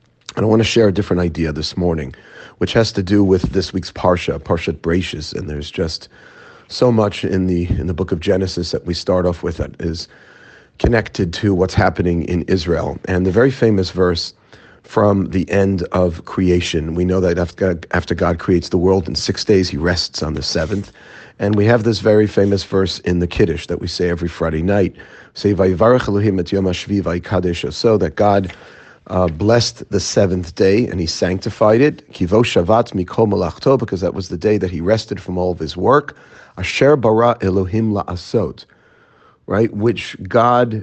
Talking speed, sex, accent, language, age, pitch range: 180 wpm, male, American, English, 40-59, 85-105 Hz